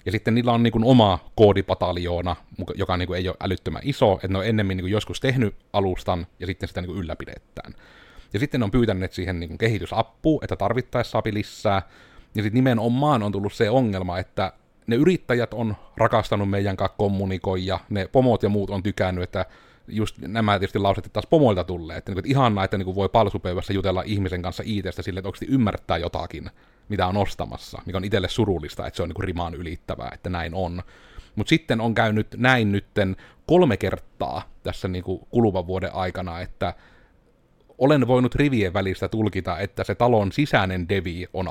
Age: 30-49